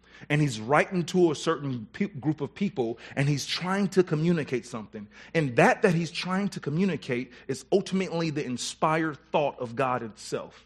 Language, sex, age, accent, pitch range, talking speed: English, male, 40-59, American, 140-185 Hz, 175 wpm